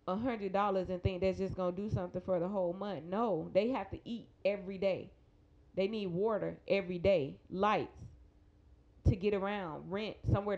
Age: 20-39